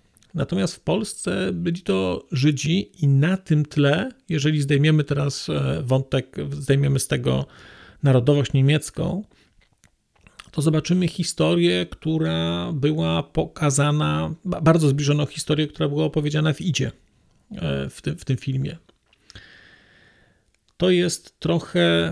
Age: 40-59